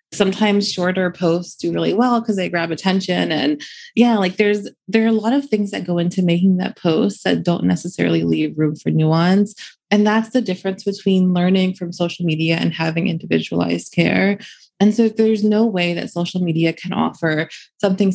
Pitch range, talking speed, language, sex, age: 175-215 Hz, 190 wpm, English, female, 20-39